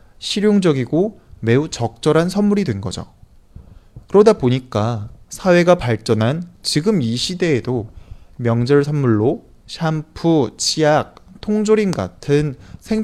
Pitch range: 105-160 Hz